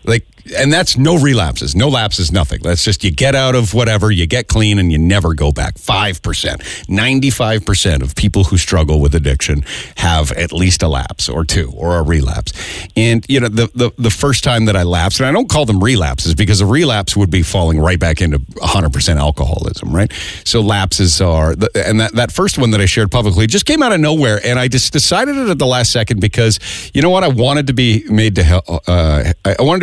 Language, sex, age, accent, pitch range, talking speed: English, male, 50-69, American, 85-125 Hz, 225 wpm